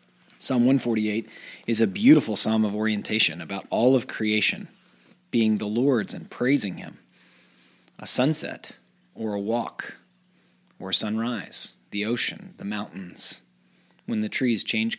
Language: English